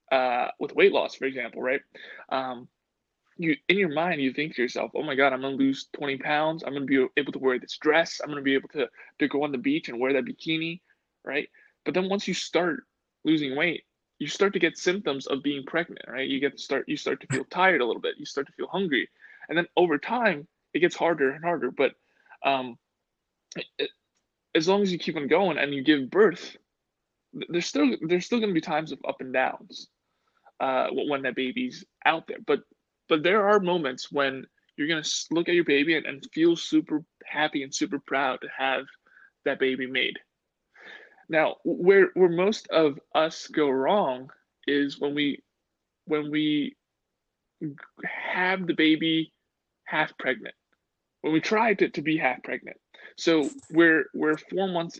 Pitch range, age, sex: 140-185 Hz, 20-39, male